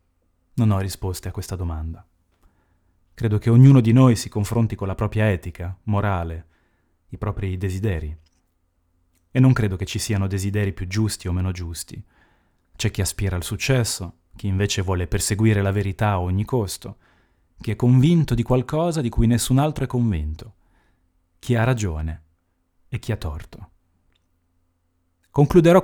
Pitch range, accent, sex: 85-120 Hz, native, male